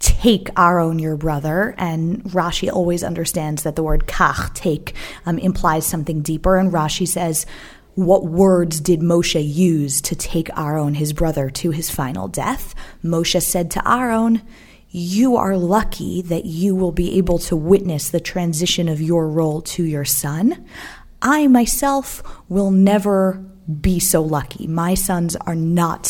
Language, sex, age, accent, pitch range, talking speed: English, female, 20-39, American, 160-190 Hz, 155 wpm